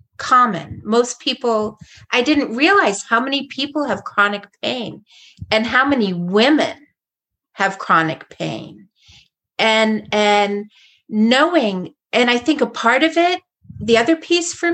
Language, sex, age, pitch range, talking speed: English, female, 40-59, 215-280 Hz, 135 wpm